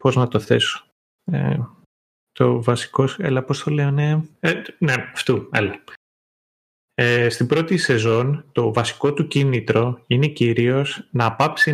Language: Greek